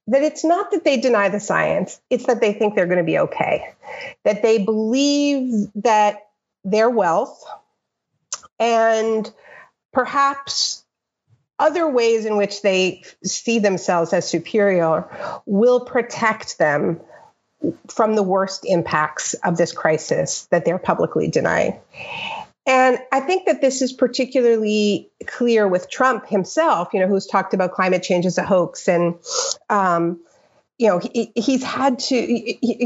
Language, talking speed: English, 140 wpm